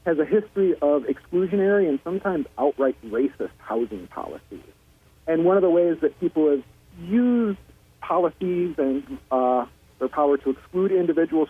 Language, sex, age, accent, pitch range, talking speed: English, male, 40-59, American, 135-180 Hz, 145 wpm